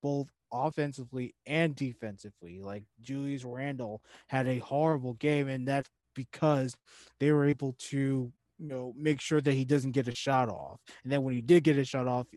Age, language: 20-39, English